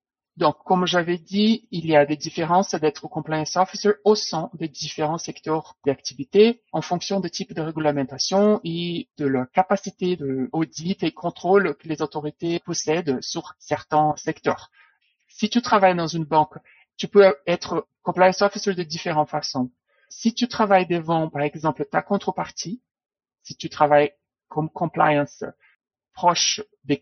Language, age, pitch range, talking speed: French, 60-79, 145-180 Hz, 150 wpm